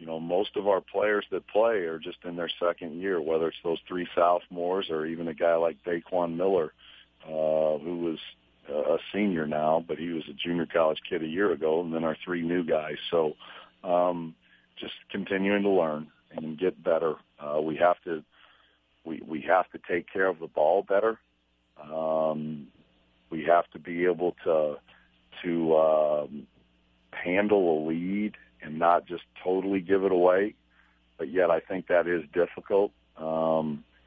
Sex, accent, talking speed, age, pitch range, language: male, American, 175 wpm, 50-69, 75-90 Hz, English